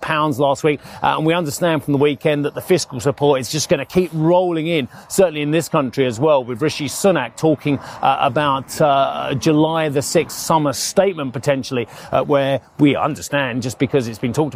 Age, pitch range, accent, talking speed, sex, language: 40-59, 140-170 Hz, British, 200 wpm, male, English